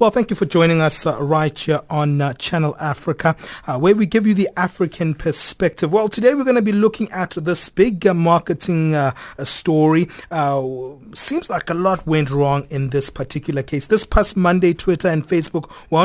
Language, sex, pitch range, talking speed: English, male, 145-180 Hz, 200 wpm